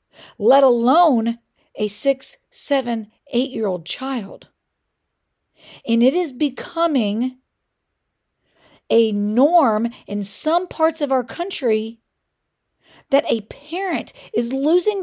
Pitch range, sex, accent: 225-295 Hz, female, American